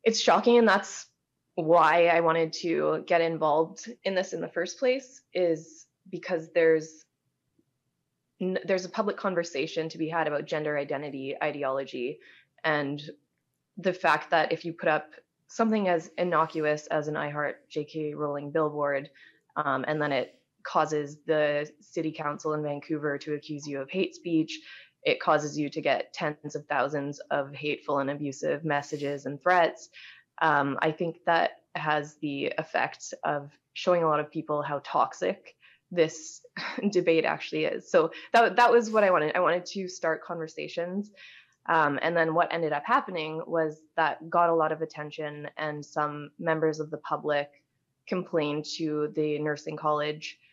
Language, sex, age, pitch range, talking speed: English, female, 20-39, 150-175 Hz, 160 wpm